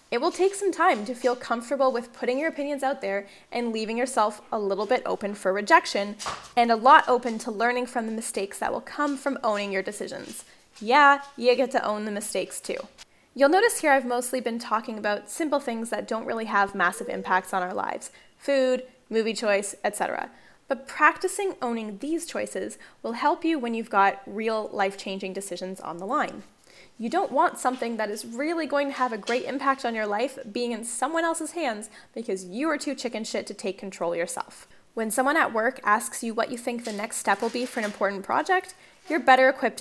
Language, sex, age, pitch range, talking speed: English, female, 10-29, 210-275 Hz, 210 wpm